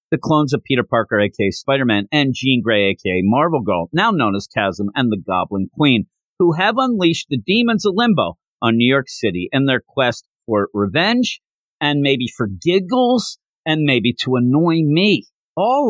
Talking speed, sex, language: 175 wpm, male, English